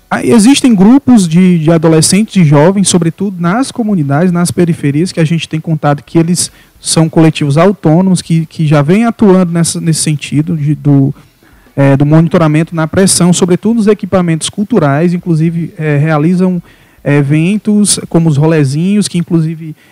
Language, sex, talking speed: Portuguese, male, 140 wpm